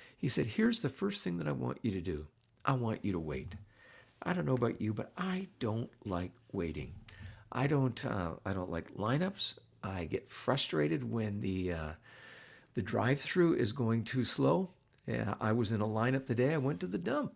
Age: 50-69